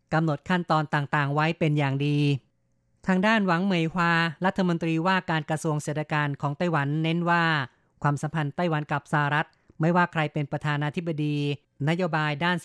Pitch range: 145-170 Hz